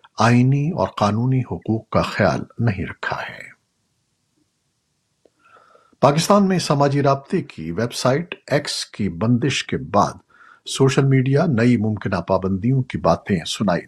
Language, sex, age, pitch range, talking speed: Urdu, male, 50-69, 105-135 Hz, 125 wpm